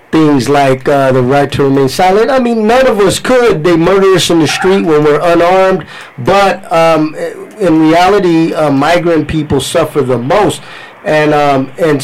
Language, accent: English, American